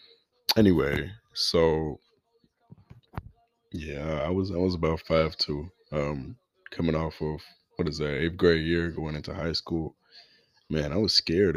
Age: 20-39